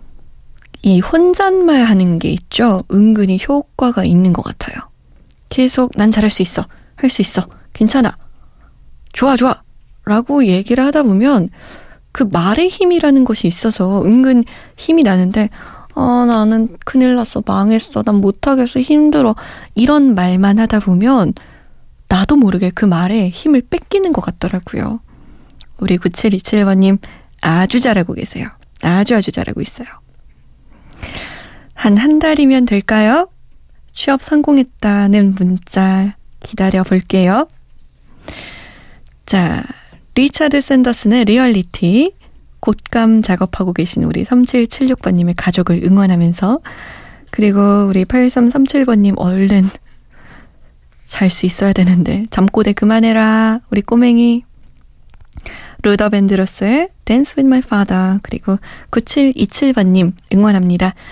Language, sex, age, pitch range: Korean, female, 20-39, 190-255 Hz